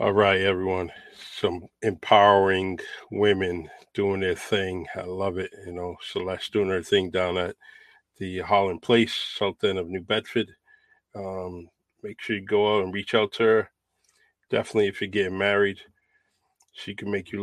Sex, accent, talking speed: male, American, 165 wpm